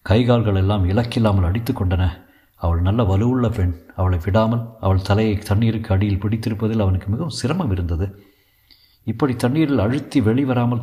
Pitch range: 95-115 Hz